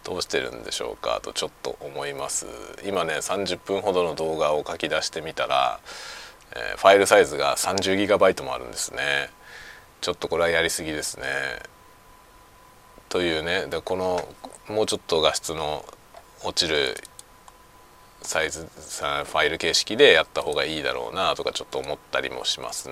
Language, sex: Japanese, male